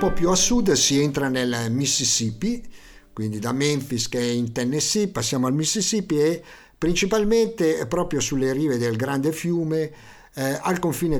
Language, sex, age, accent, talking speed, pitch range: Italian, male, 50-69, native, 150 wpm, 115-150 Hz